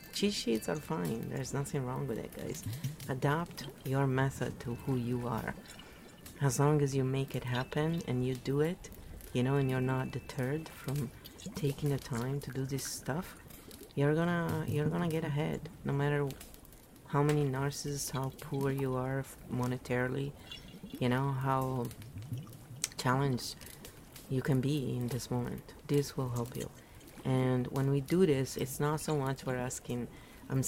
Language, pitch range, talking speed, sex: English, 125-145 Hz, 165 wpm, female